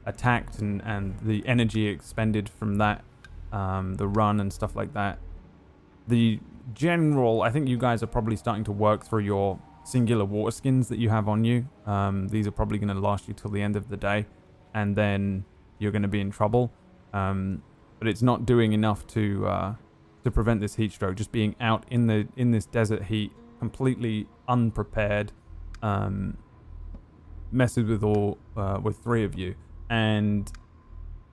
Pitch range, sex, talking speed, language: 95-115 Hz, male, 175 wpm, English